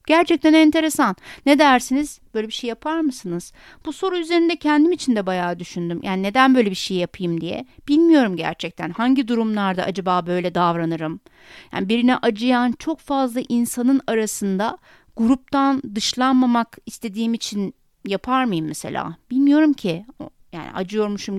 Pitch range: 205-290 Hz